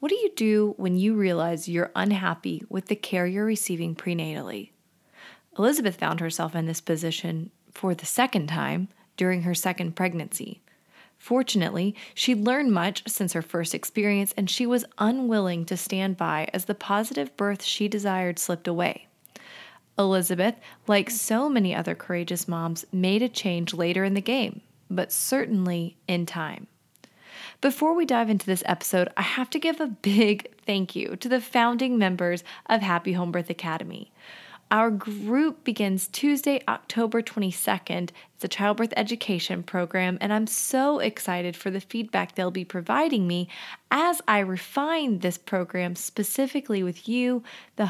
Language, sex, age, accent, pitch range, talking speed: English, female, 20-39, American, 180-225 Hz, 155 wpm